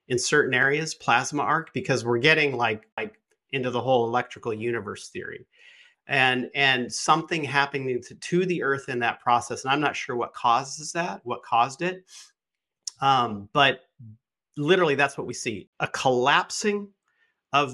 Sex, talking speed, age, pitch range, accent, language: male, 160 wpm, 40-59, 115-150 Hz, American, English